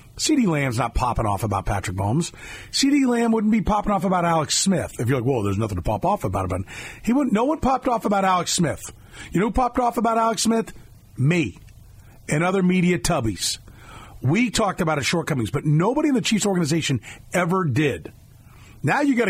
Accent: American